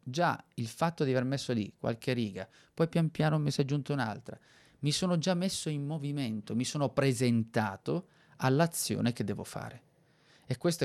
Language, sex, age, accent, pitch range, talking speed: Italian, male, 30-49, native, 115-150 Hz, 170 wpm